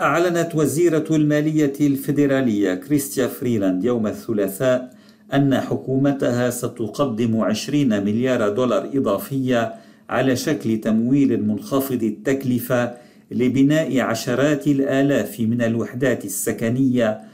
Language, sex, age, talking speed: Arabic, male, 50-69, 90 wpm